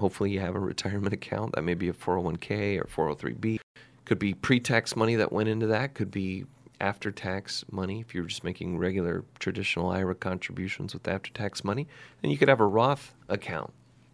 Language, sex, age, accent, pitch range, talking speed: English, male, 30-49, American, 90-110 Hz, 185 wpm